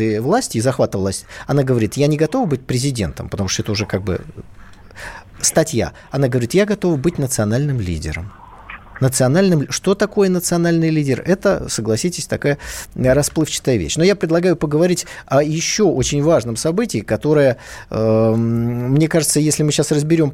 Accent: native